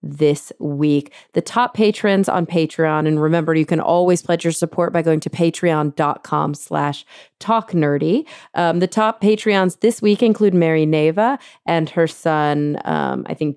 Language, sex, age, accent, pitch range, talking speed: English, female, 30-49, American, 155-205 Hz, 165 wpm